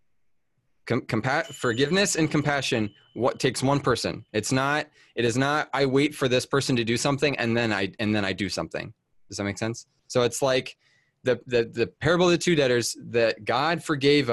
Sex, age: male, 20-39